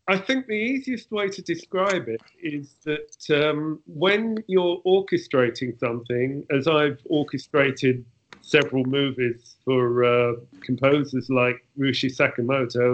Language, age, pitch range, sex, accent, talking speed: English, 40-59, 130-165 Hz, male, British, 120 wpm